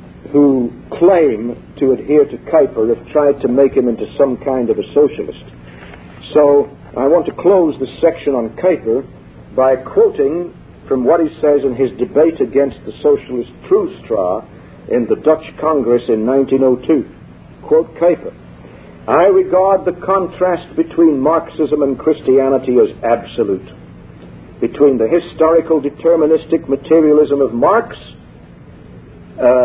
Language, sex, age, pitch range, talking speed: English, male, 60-79, 130-195 Hz, 130 wpm